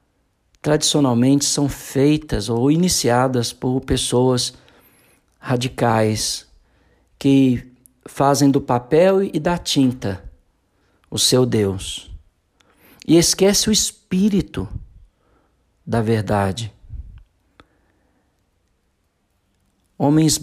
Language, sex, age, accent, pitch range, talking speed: Portuguese, male, 50-69, Brazilian, 95-145 Hz, 75 wpm